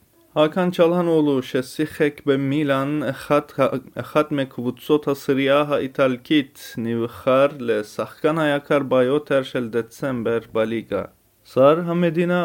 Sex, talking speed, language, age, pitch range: male, 75 wpm, Hebrew, 30-49, 125-155 Hz